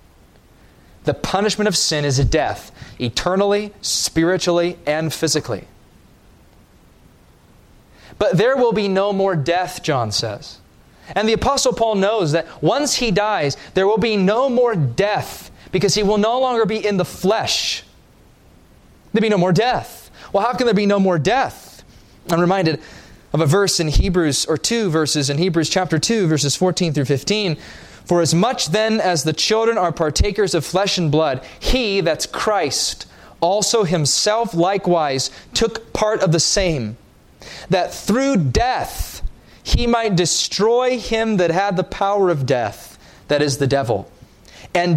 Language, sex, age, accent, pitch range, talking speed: English, male, 20-39, American, 155-210 Hz, 155 wpm